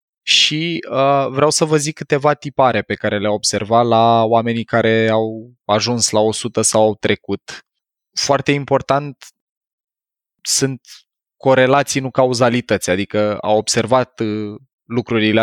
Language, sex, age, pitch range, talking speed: Romanian, male, 20-39, 105-125 Hz, 130 wpm